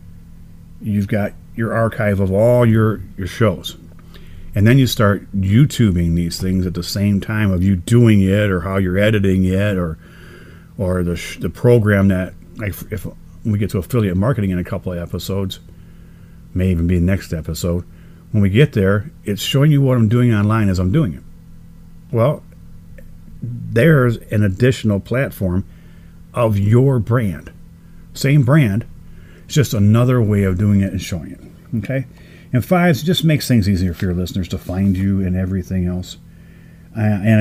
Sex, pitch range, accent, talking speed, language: male, 90-115 Hz, American, 170 wpm, English